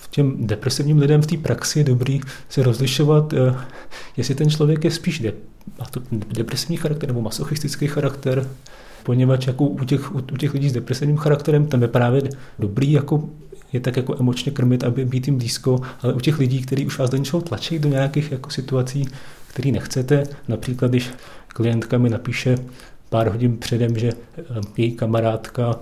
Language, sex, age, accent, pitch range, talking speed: Czech, male, 30-49, native, 120-140 Hz, 165 wpm